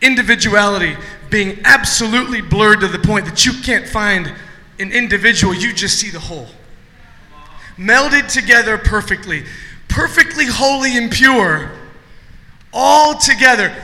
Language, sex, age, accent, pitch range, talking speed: English, male, 20-39, American, 205-295 Hz, 115 wpm